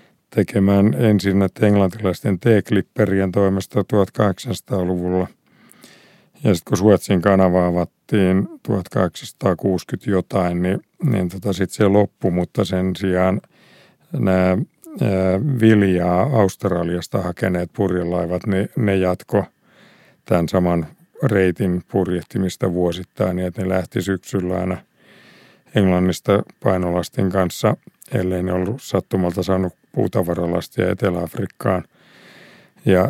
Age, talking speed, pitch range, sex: 50-69, 95 wpm, 90-105 Hz, male